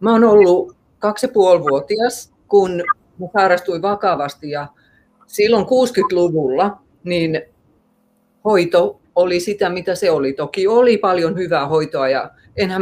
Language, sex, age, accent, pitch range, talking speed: Finnish, female, 30-49, native, 160-235 Hz, 110 wpm